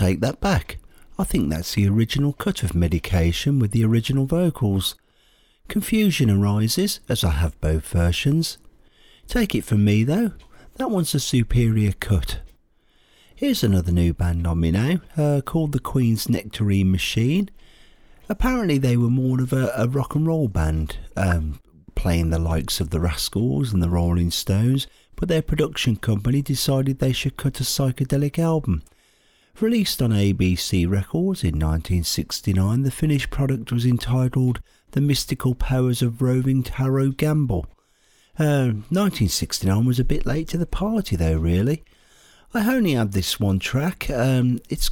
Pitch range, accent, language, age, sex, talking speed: 95-145 Hz, British, English, 50-69, male, 155 wpm